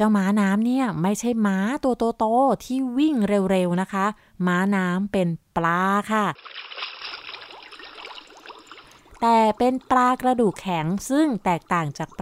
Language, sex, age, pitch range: Thai, female, 20-39, 185-235 Hz